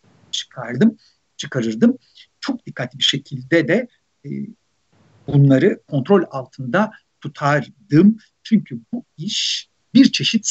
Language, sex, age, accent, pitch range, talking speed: Turkish, male, 60-79, native, 130-180 Hz, 95 wpm